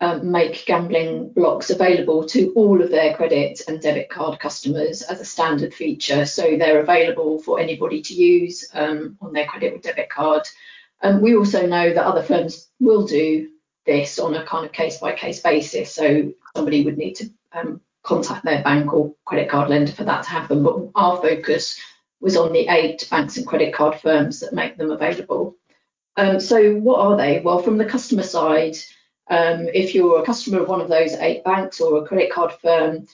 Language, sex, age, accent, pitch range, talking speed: English, female, 40-59, British, 160-205 Hz, 195 wpm